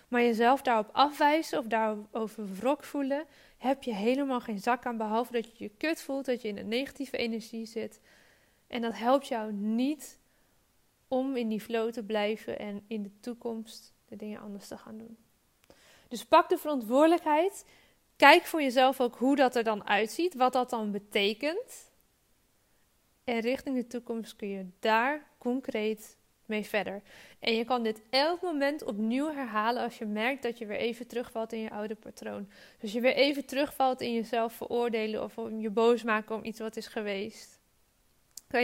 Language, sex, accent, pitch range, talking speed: Dutch, female, Dutch, 220-265 Hz, 175 wpm